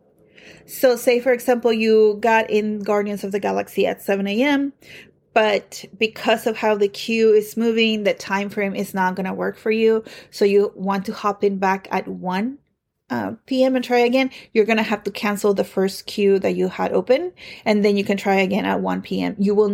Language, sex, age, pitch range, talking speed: English, female, 30-49, 195-245 Hz, 215 wpm